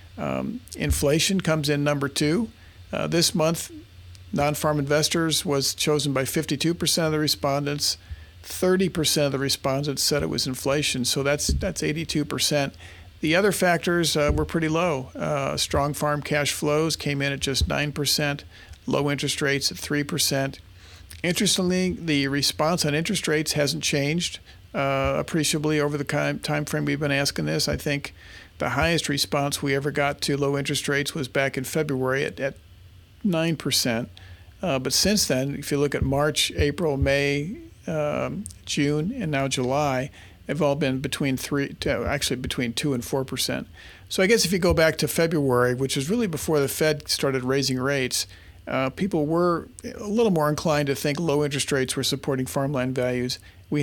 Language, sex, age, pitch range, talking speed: English, male, 50-69, 130-155 Hz, 165 wpm